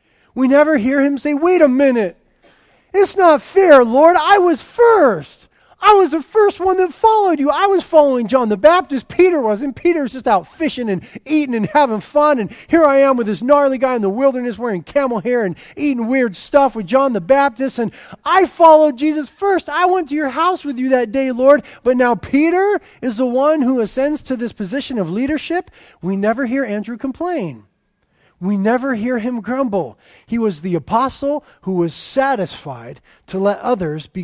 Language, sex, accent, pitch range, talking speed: English, male, American, 185-290 Hz, 195 wpm